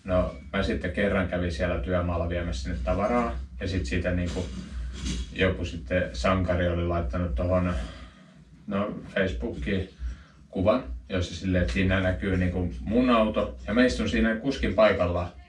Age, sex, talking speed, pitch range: 30-49, male, 145 wpm, 85-95 Hz